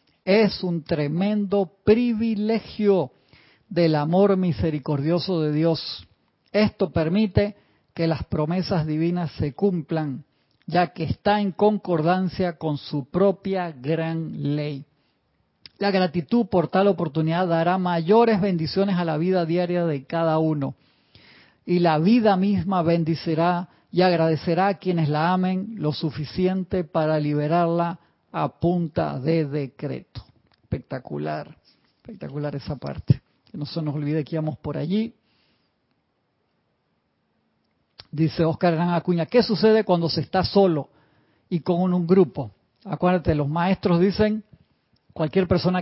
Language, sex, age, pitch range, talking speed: Spanish, male, 50-69, 155-185 Hz, 125 wpm